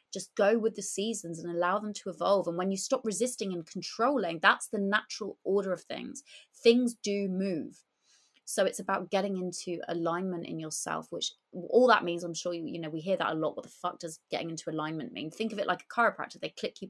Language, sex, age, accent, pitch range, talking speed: English, female, 20-39, British, 170-215 Hz, 230 wpm